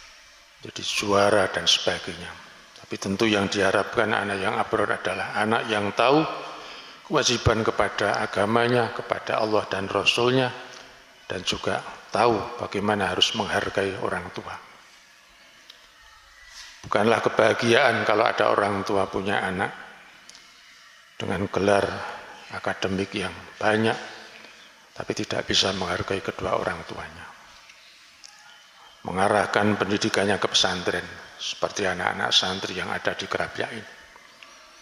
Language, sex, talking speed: Indonesian, male, 105 wpm